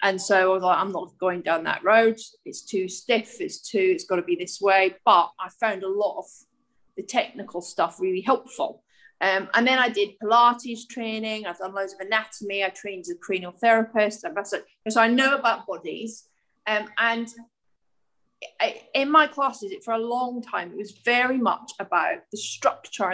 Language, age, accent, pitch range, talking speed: English, 30-49, British, 195-240 Hz, 190 wpm